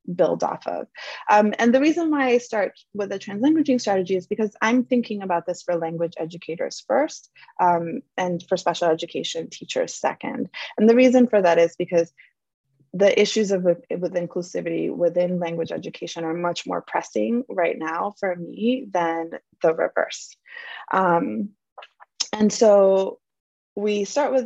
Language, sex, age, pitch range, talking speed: English, female, 20-39, 175-235 Hz, 155 wpm